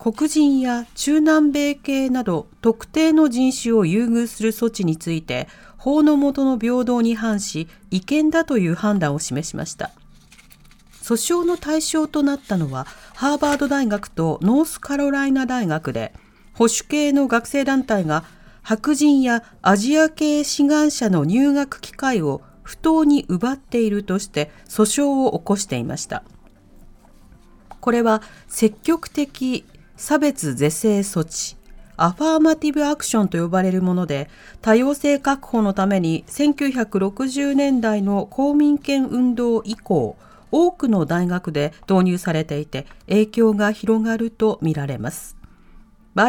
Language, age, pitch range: Japanese, 40-59, 190-280 Hz